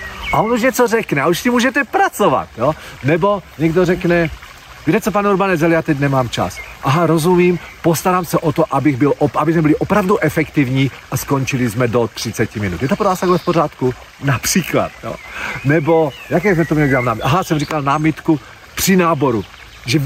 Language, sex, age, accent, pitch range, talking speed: Czech, male, 40-59, native, 125-175 Hz, 180 wpm